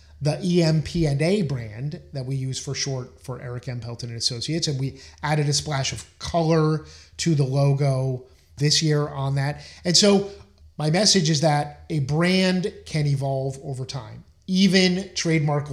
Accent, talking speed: American, 160 wpm